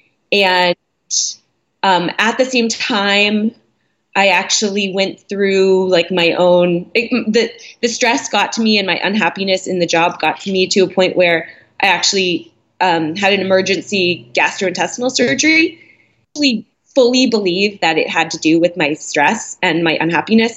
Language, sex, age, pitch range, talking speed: English, female, 20-39, 180-225 Hz, 160 wpm